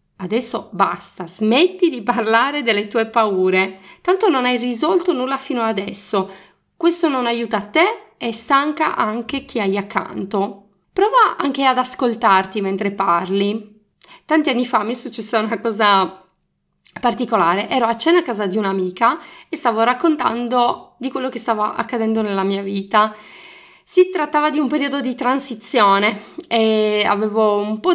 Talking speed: 150 wpm